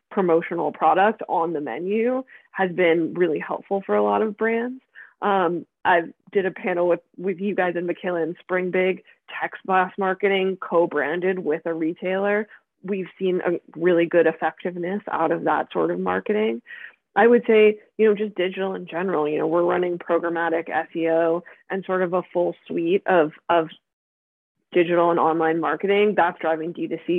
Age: 20-39